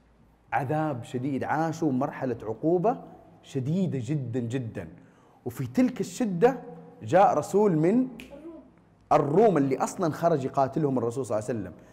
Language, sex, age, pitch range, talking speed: Arabic, male, 30-49, 130-180 Hz, 120 wpm